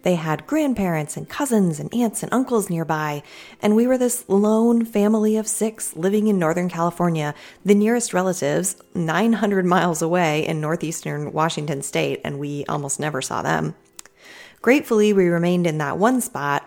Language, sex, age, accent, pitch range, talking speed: English, female, 30-49, American, 155-210 Hz, 160 wpm